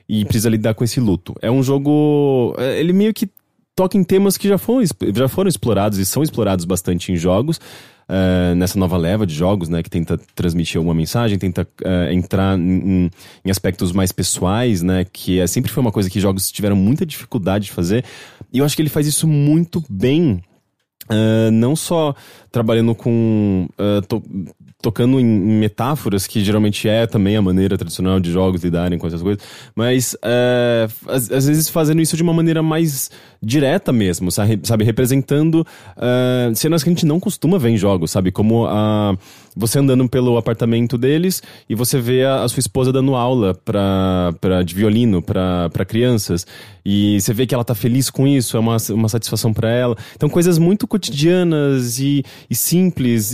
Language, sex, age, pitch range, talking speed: English, male, 20-39, 95-135 Hz, 175 wpm